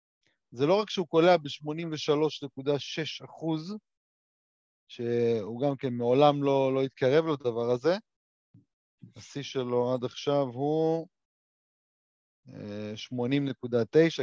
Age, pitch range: 30-49, 125-155 Hz